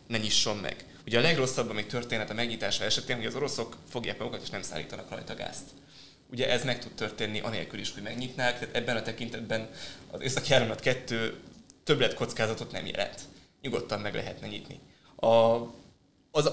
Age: 20-39